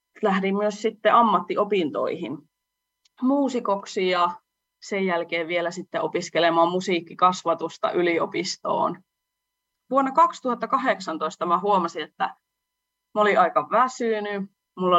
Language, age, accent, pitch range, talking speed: English, 20-39, Finnish, 170-240 Hz, 90 wpm